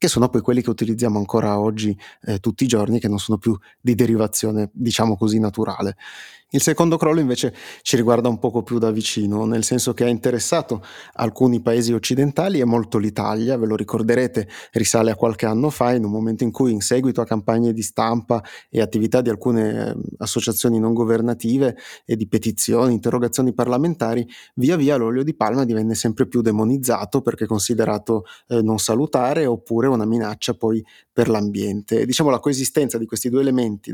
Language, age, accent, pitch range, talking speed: Italian, 30-49, native, 110-125 Hz, 180 wpm